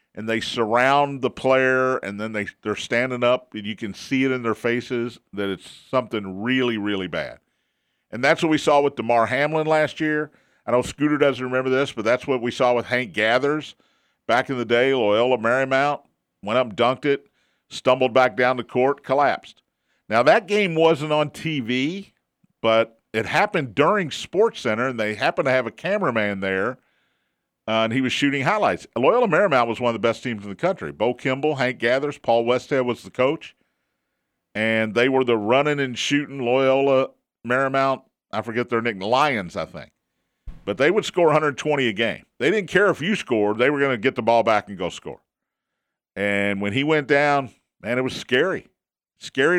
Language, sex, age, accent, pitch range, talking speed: English, male, 50-69, American, 115-140 Hz, 195 wpm